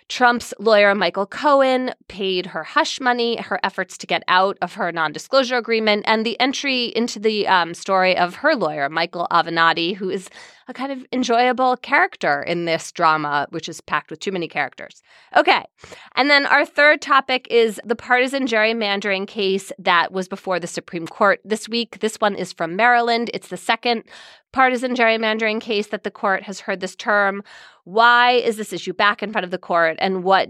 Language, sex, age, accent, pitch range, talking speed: English, female, 30-49, American, 180-245 Hz, 185 wpm